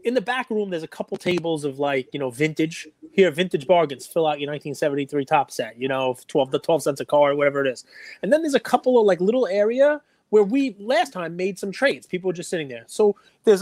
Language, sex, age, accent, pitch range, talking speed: English, male, 30-49, American, 155-225 Hz, 245 wpm